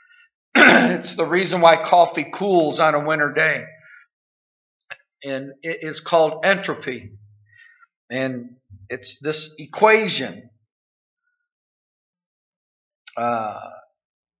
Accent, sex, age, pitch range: American, male, 50-69, 140-175 Hz